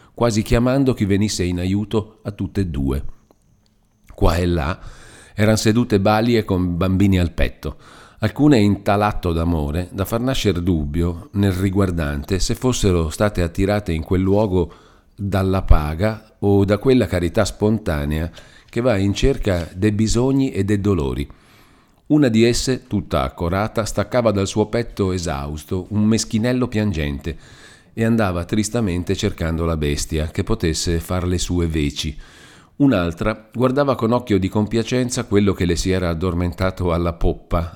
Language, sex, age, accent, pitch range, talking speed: Italian, male, 40-59, native, 85-110 Hz, 150 wpm